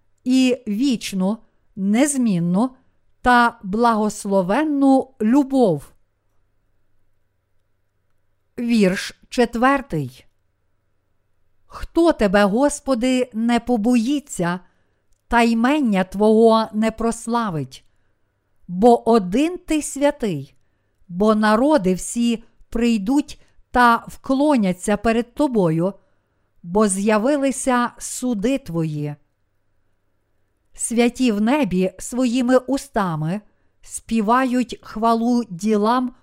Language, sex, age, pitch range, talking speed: Ukrainian, female, 50-69, 175-250 Hz, 70 wpm